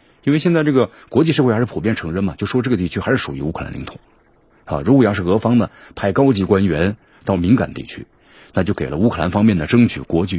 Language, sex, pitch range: Chinese, male, 95-135 Hz